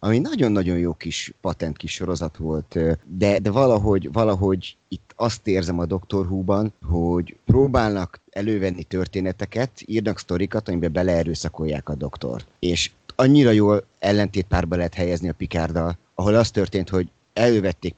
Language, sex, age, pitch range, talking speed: Hungarian, male, 30-49, 85-110 Hz, 130 wpm